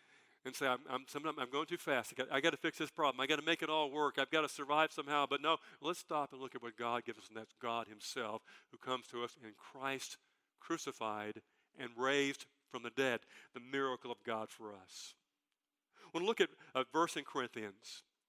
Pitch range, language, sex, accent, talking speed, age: 125-160 Hz, English, male, American, 225 wpm, 50-69